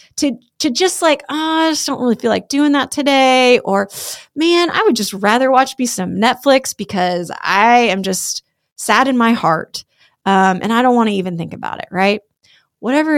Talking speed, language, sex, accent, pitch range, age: 200 wpm, English, female, American, 195-270 Hz, 30-49